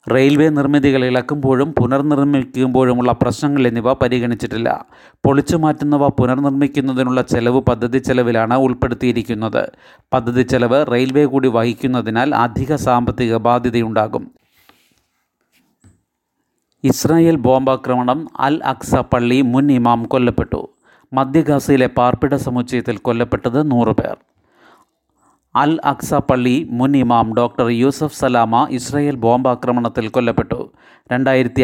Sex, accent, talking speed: male, native, 90 wpm